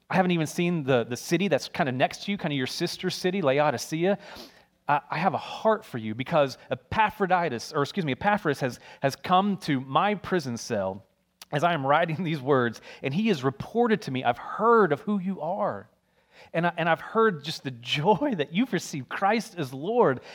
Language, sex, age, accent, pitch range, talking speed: English, male, 30-49, American, 135-195 Hz, 210 wpm